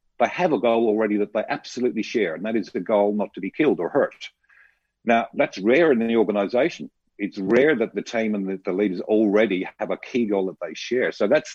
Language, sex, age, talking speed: English, male, 50-69, 235 wpm